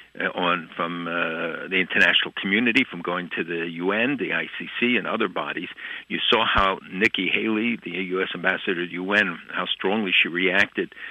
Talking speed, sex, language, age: 165 wpm, male, English, 60-79